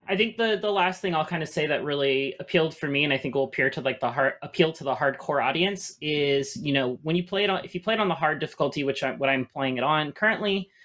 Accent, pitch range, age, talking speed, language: American, 130-170 Hz, 30-49, 295 wpm, English